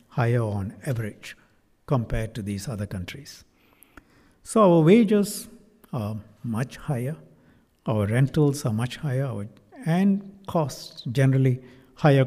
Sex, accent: male, Indian